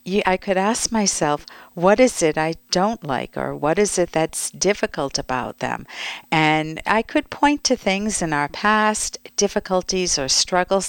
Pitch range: 145-185 Hz